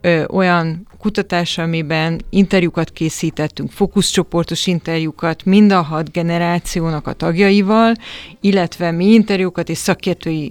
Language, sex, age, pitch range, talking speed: Hungarian, female, 30-49, 165-195 Hz, 105 wpm